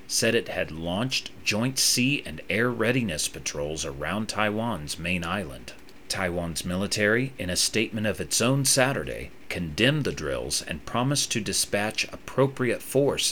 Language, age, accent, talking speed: English, 40-59, American, 145 wpm